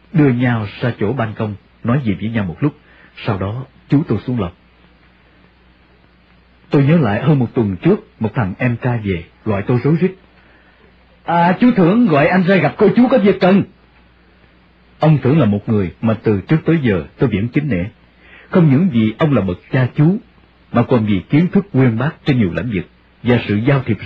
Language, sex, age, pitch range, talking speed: English, male, 50-69, 95-135 Hz, 205 wpm